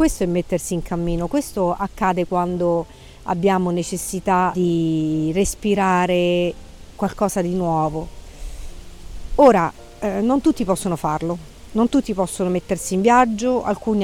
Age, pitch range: 50-69, 170-205 Hz